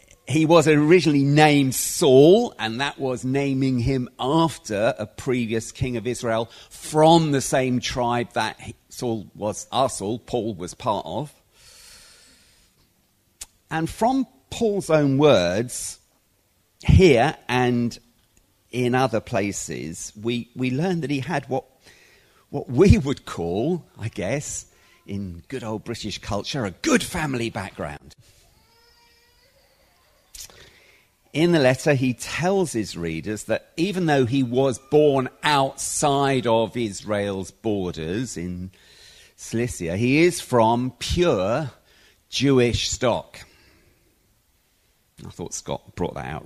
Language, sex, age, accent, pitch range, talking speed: English, male, 50-69, British, 100-140 Hz, 120 wpm